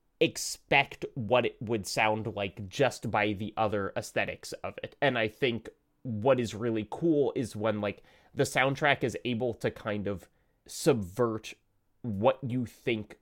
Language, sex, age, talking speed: English, male, 20-39, 155 wpm